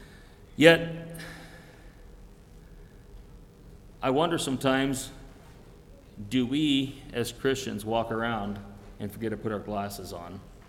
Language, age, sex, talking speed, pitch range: English, 40-59, male, 95 wpm, 105-140 Hz